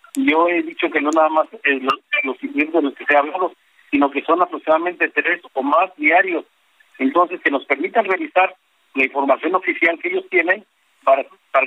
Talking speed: 175 wpm